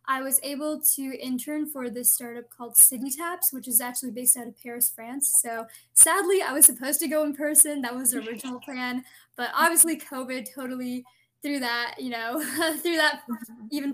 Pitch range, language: 240-290 Hz, English